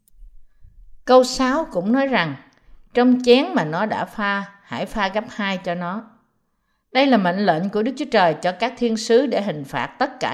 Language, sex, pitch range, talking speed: Vietnamese, female, 165-240 Hz, 195 wpm